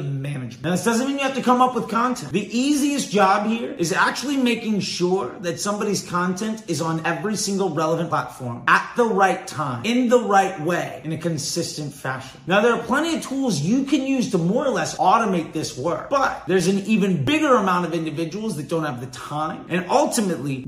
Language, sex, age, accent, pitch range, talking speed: English, male, 30-49, American, 165-225 Hz, 210 wpm